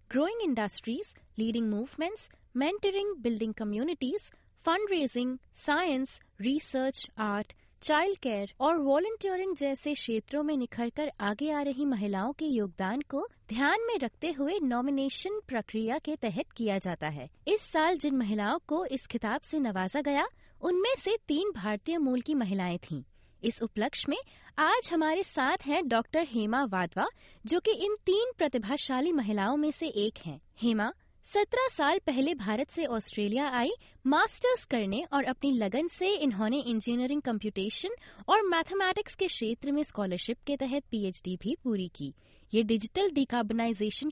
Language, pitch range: English, 225-325 Hz